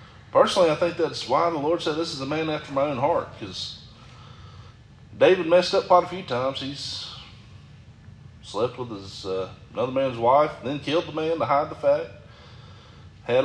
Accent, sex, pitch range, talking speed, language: American, male, 110-150 Hz, 185 wpm, English